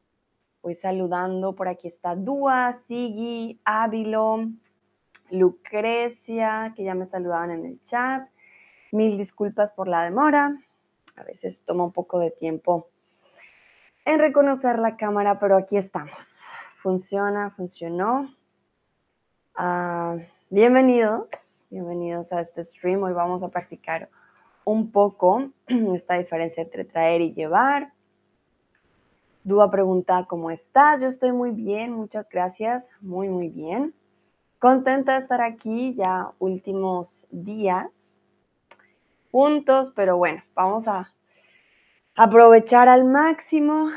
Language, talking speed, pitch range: Spanish, 110 wpm, 180-235 Hz